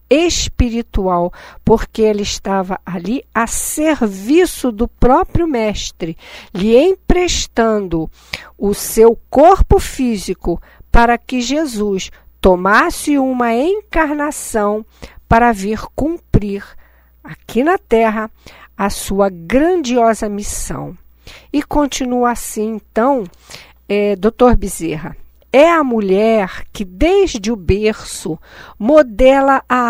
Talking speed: 95 wpm